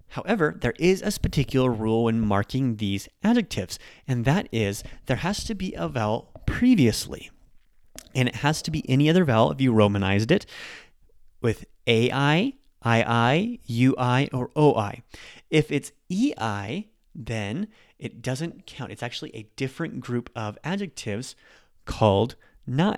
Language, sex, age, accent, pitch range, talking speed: English, male, 30-49, American, 110-140 Hz, 140 wpm